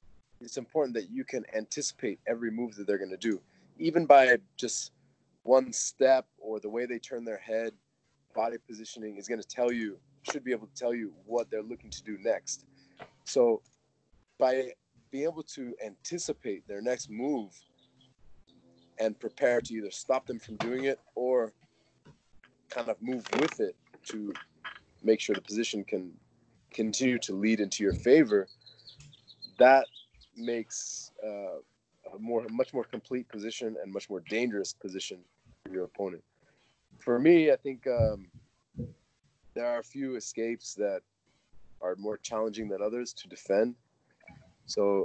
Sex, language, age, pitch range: male, English, 30-49, 105-130 Hz